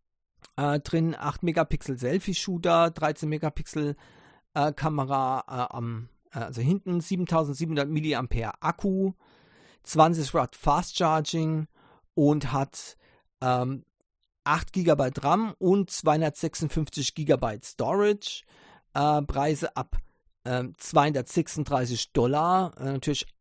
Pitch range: 140-170 Hz